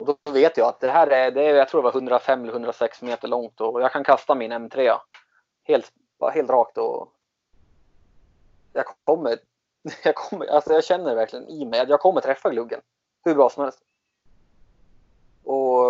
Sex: male